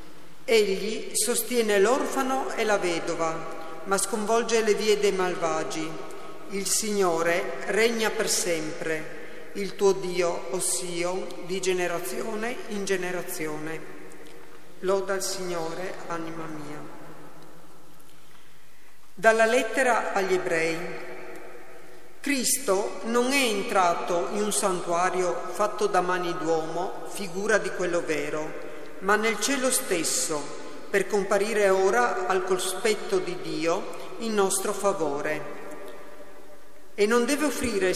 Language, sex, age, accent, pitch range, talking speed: Italian, female, 50-69, native, 175-215 Hz, 105 wpm